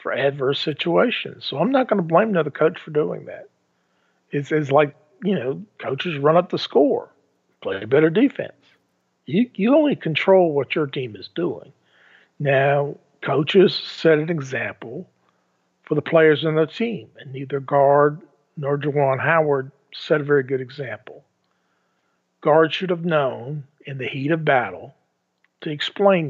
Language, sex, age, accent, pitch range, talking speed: English, male, 50-69, American, 145-180 Hz, 160 wpm